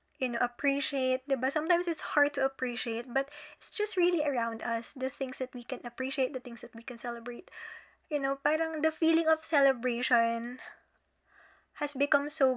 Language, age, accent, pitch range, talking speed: English, 20-39, Filipino, 240-300 Hz, 175 wpm